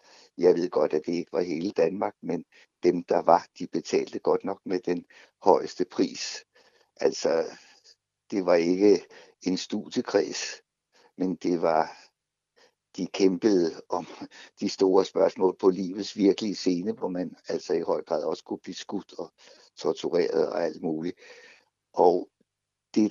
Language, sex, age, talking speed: Danish, male, 60-79, 150 wpm